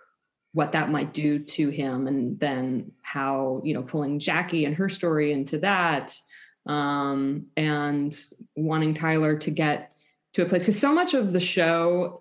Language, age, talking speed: English, 20-39, 160 wpm